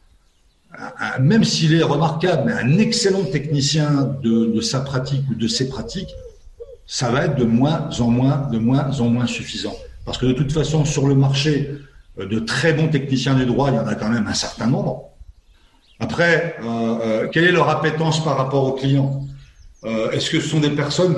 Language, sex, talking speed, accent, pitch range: French, male, 200 wpm, French, 130-160 Hz